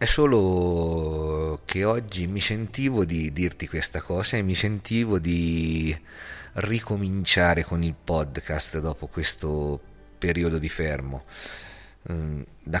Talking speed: 115 wpm